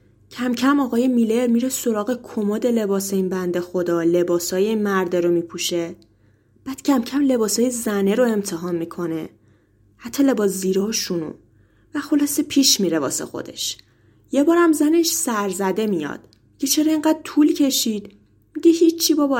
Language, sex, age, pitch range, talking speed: Persian, female, 20-39, 170-280 Hz, 140 wpm